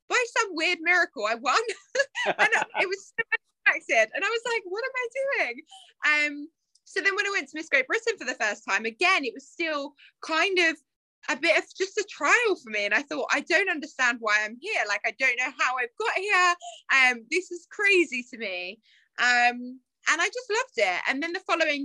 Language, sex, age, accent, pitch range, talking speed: English, female, 20-39, British, 225-340 Hz, 220 wpm